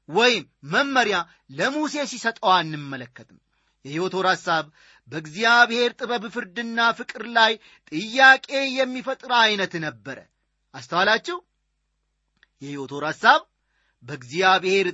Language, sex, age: Amharic, male, 40-59